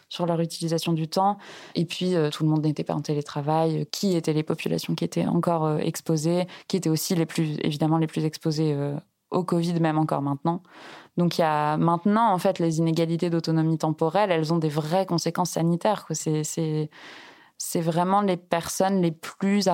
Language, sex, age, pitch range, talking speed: French, female, 20-39, 160-190 Hz, 195 wpm